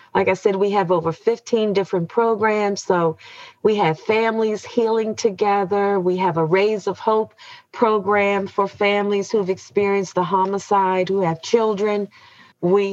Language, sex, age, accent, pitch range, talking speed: English, female, 40-59, American, 190-220 Hz, 155 wpm